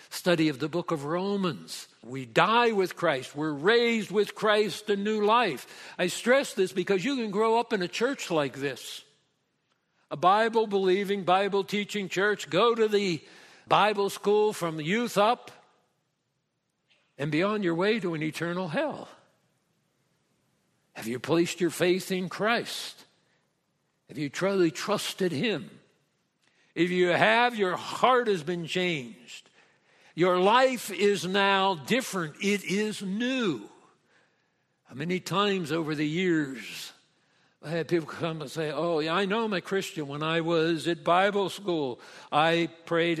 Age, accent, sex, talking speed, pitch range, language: 60-79, American, male, 145 wpm, 165-210 Hz, English